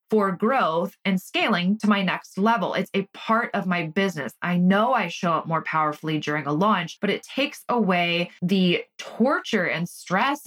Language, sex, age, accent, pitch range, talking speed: English, female, 20-39, American, 175-220 Hz, 185 wpm